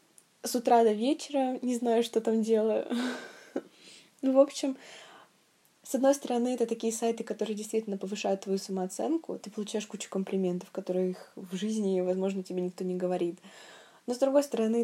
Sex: female